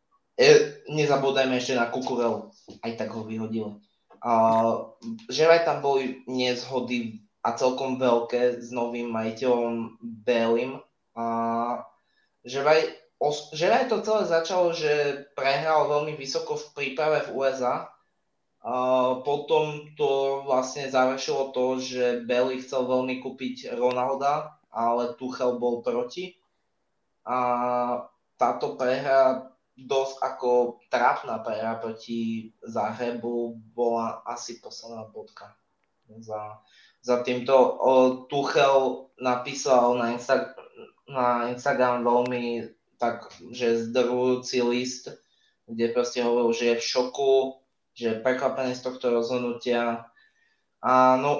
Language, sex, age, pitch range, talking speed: Slovak, male, 20-39, 120-135 Hz, 110 wpm